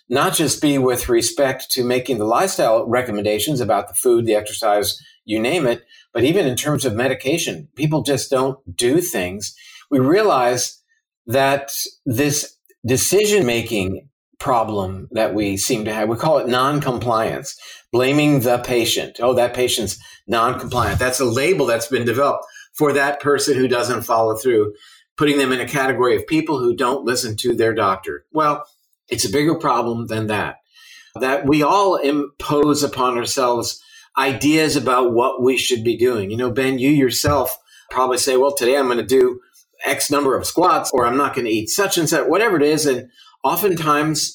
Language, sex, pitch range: English, male, 120-155 Hz